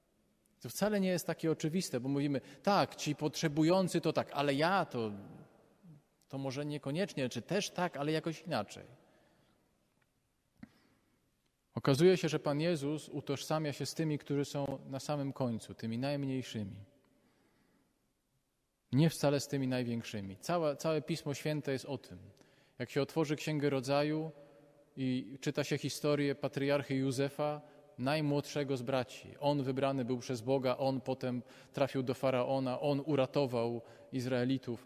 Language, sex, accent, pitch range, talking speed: Polish, male, native, 130-150 Hz, 140 wpm